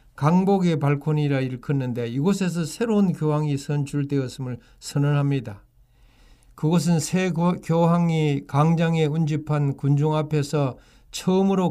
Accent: native